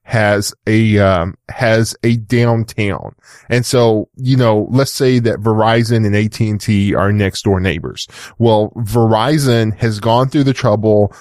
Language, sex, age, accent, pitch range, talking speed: English, male, 10-29, American, 110-125 Hz, 145 wpm